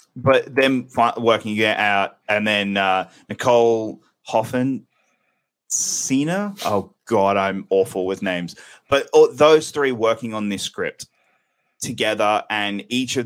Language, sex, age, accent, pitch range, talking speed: English, male, 20-39, Australian, 100-120 Hz, 135 wpm